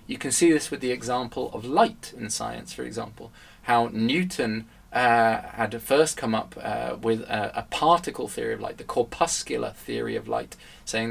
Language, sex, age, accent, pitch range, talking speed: English, male, 20-39, British, 110-125 Hz, 185 wpm